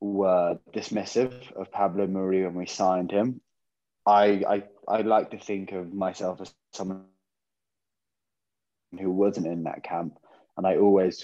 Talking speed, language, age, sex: 145 wpm, English, 20-39, male